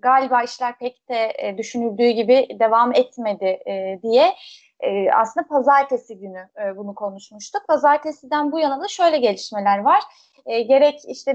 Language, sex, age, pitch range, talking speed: Turkish, female, 30-49, 225-300 Hz, 150 wpm